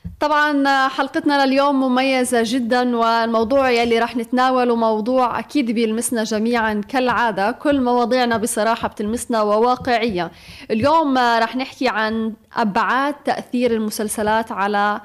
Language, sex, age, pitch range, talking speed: Arabic, female, 20-39, 225-270 Hz, 110 wpm